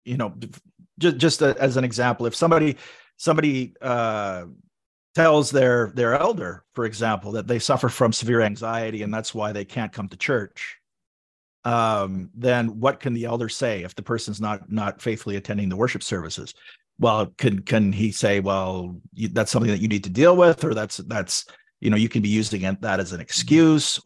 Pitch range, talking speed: 110-135 Hz, 190 wpm